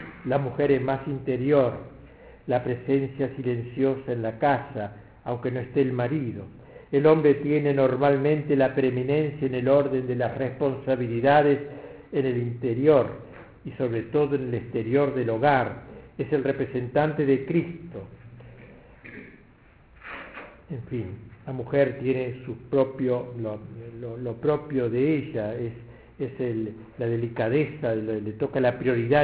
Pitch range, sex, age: 120-140 Hz, male, 60-79